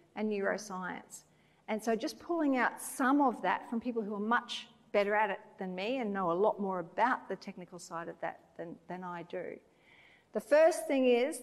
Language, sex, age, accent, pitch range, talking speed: English, female, 40-59, Australian, 205-255 Hz, 205 wpm